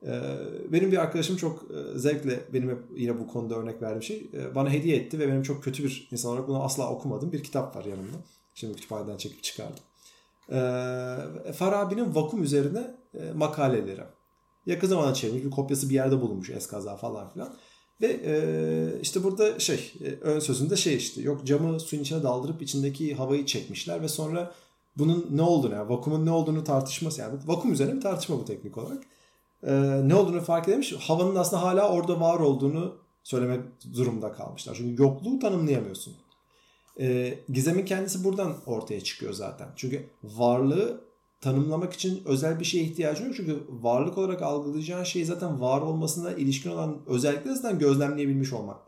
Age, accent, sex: 40-59, native, male